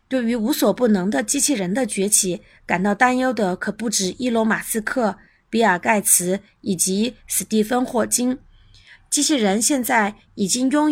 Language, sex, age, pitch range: Chinese, female, 20-39, 195-255 Hz